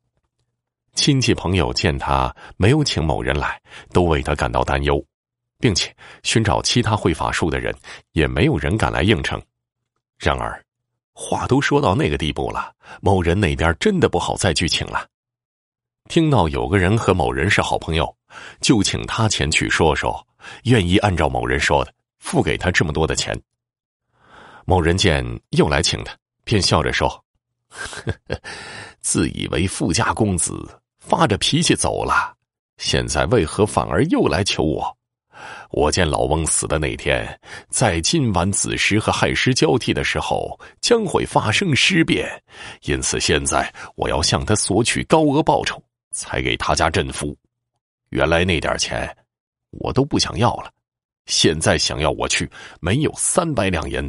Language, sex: Chinese, male